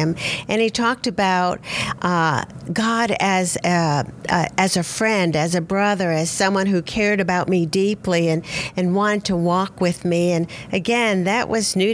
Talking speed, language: 175 wpm, English